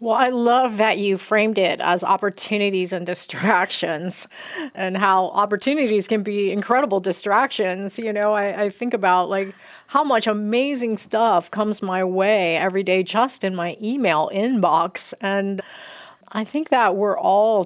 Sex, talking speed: female, 155 wpm